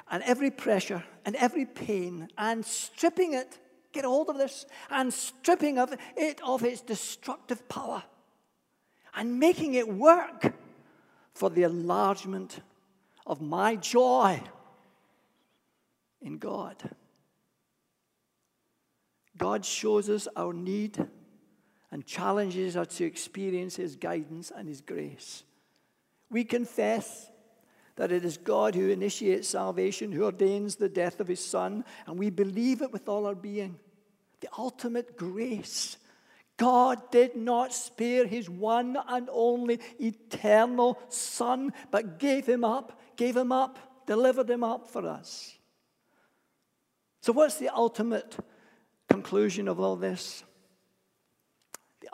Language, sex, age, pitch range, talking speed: English, male, 60-79, 195-250 Hz, 125 wpm